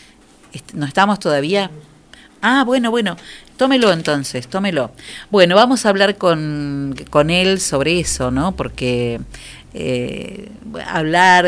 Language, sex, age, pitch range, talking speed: Spanish, female, 40-59, 150-200 Hz, 115 wpm